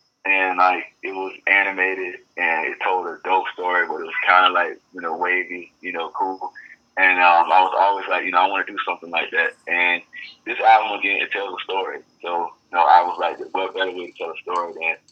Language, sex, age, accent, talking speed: English, male, 20-39, American, 240 wpm